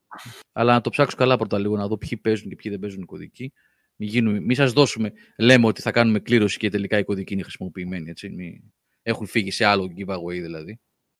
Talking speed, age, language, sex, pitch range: 200 wpm, 30-49, Greek, male, 100-130 Hz